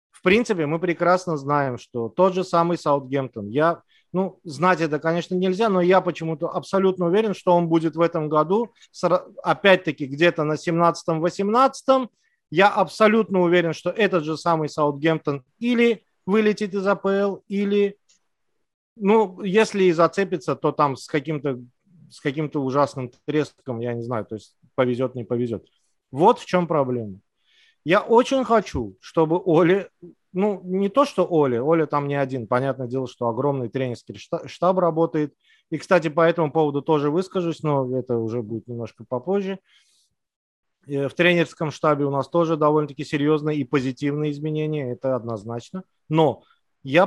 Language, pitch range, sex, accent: Russian, 135-185 Hz, male, native